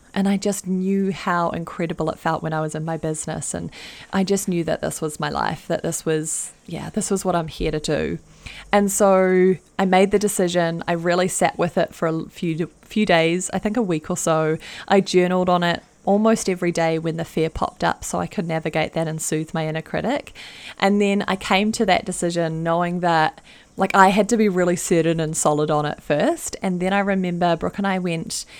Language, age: English, 20-39